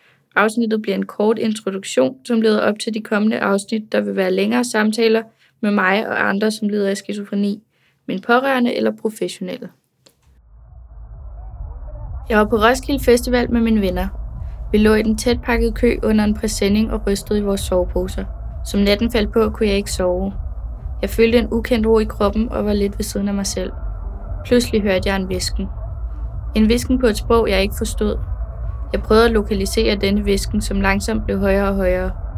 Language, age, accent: Danish, 20-39, native